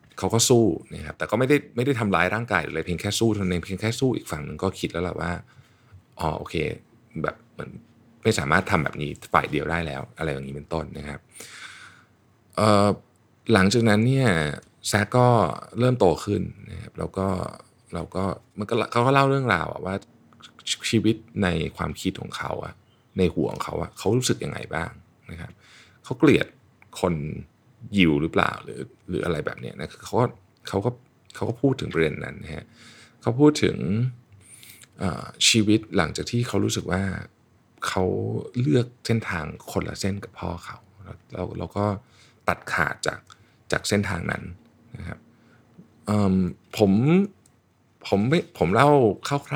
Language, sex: Thai, male